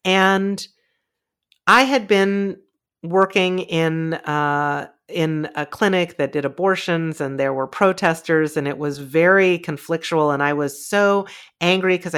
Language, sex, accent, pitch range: English, female, American, 145-190 Hz